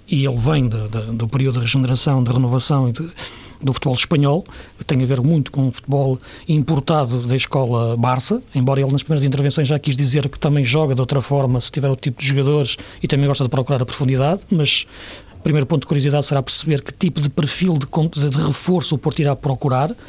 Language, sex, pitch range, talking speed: Portuguese, male, 130-155 Hz, 220 wpm